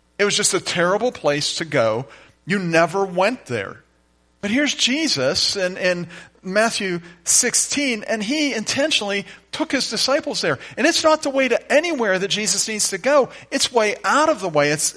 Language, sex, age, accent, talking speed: English, male, 40-59, American, 180 wpm